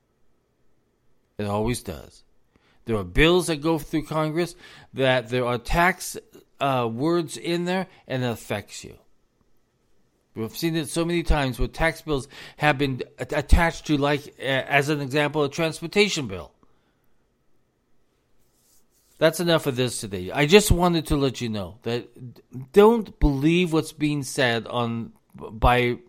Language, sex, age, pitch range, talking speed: English, male, 40-59, 115-155 Hz, 145 wpm